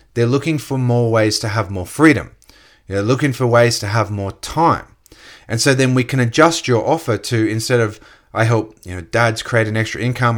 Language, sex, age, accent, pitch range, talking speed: English, male, 30-49, Australian, 110-130 Hz, 215 wpm